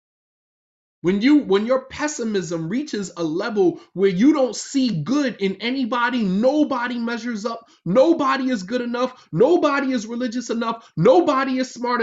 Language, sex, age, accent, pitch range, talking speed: English, male, 30-49, American, 205-260 Hz, 140 wpm